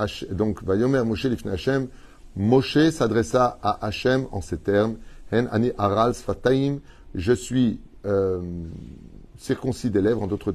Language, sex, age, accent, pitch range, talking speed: French, male, 30-49, French, 100-130 Hz, 110 wpm